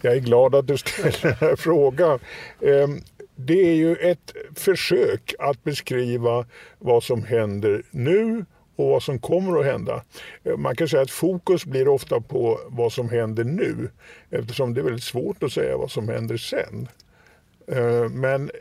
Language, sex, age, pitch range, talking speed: Swedish, male, 50-69, 125-185 Hz, 160 wpm